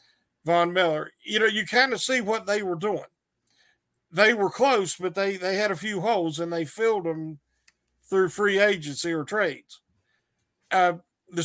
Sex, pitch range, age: male, 170-220 Hz, 50-69